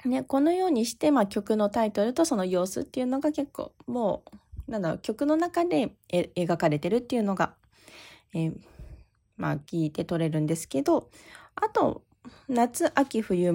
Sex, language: female, Japanese